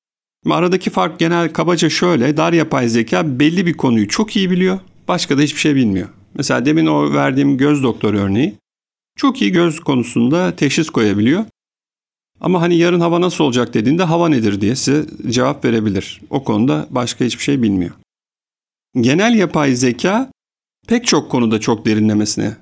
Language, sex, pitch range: Turkish, male, 110-155 Hz